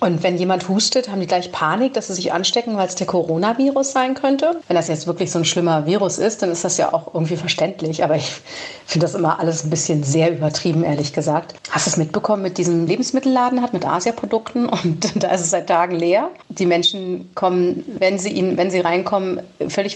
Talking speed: 220 wpm